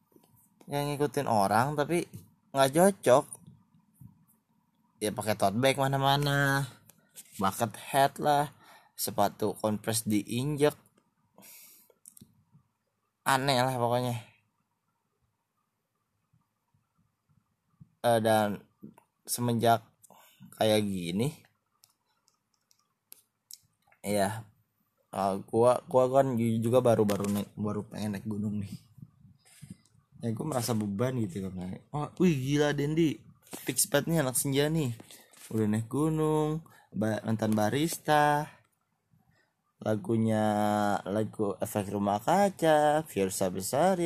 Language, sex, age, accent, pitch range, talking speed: Indonesian, male, 20-39, native, 105-140 Hz, 85 wpm